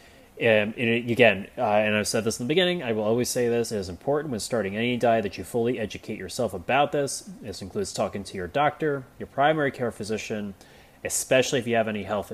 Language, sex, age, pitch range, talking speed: English, male, 30-49, 105-125 Hz, 220 wpm